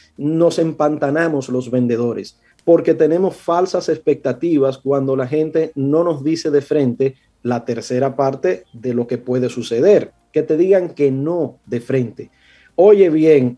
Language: Spanish